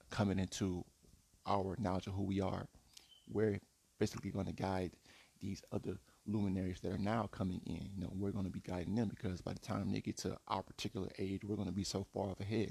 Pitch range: 95-105 Hz